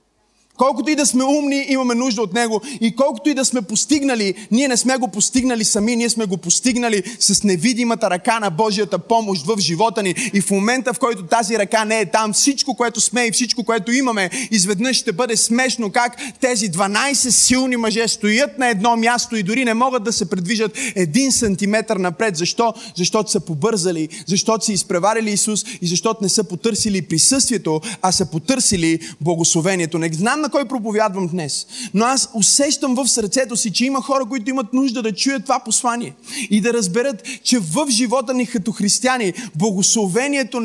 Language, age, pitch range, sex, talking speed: Bulgarian, 20-39, 210-260 Hz, male, 180 wpm